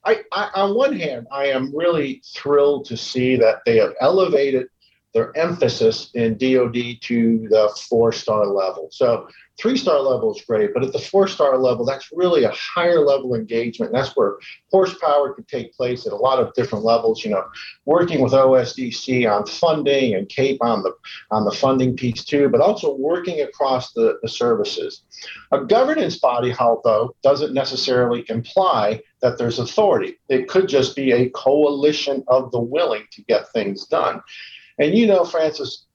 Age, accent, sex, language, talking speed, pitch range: 50-69, American, male, English, 175 wpm, 120-165 Hz